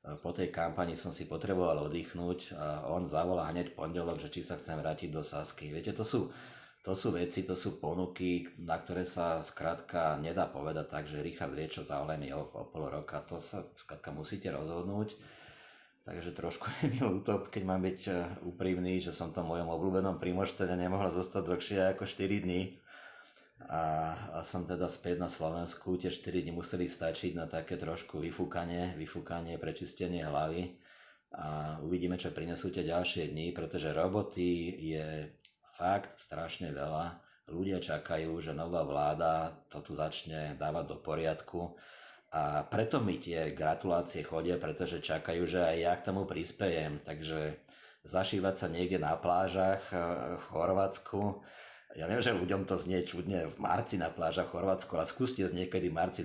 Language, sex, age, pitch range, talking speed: Slovak, male, 30-49, 80-95 Hz, 160 wpm